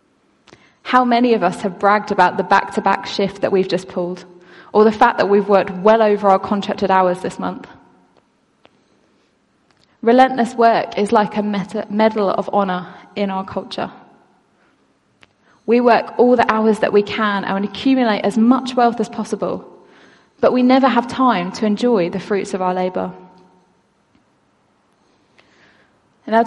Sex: female